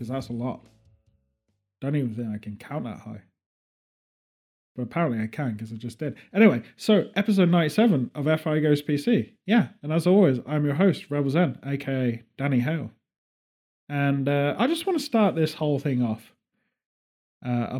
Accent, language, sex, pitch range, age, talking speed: British, English, male, 120-175 Hz, 30-49, 170 wpm